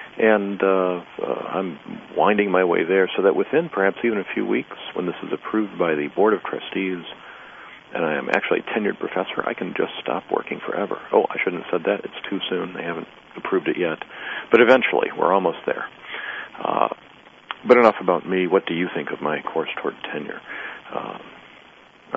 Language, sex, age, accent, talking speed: English, male, 50-69, American, 200 wpm